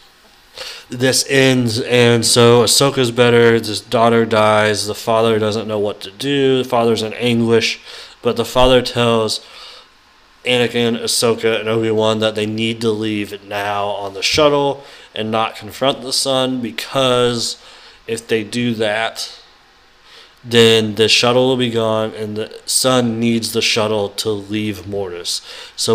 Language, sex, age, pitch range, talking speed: English, male, 30-49, 105-120 Hz, 145 wpm